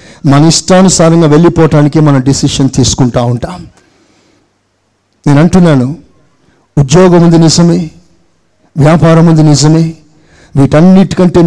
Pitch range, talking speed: 145-200 Hz, 85 wpm